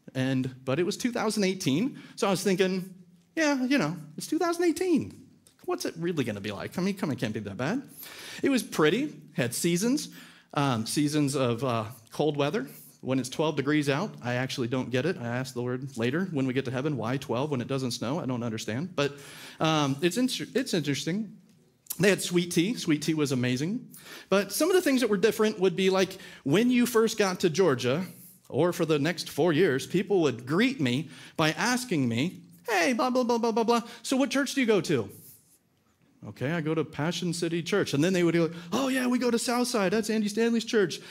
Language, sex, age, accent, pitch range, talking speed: English, male, 40-59, American, 130-200 Hz, 215 wpm